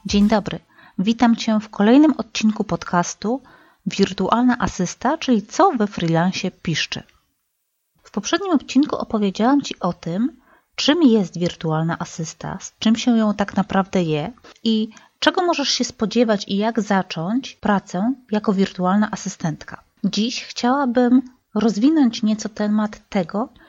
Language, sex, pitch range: Polish, female, 185-240 Hz